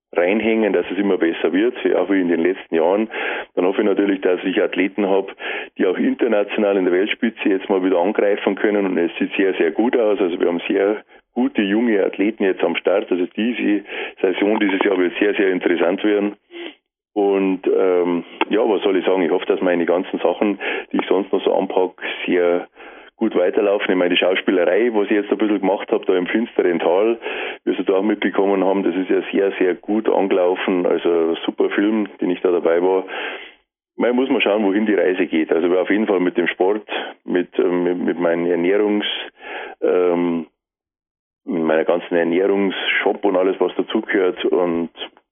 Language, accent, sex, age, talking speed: German, Austrian, male, 30-49, 195 wpm